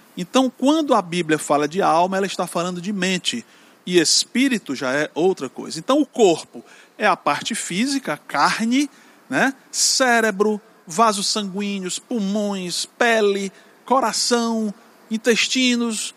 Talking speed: 125 wpm